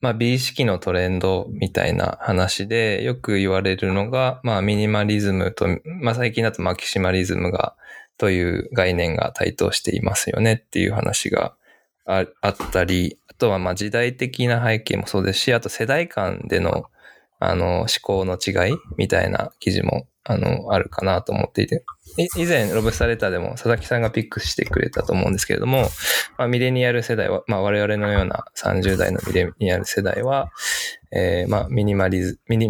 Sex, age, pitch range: male, 20-39, 95-115 Hz